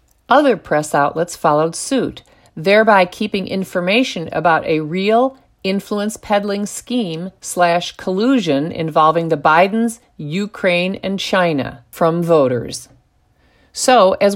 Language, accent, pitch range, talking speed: English, American, 170-215 Hz, 95 wpm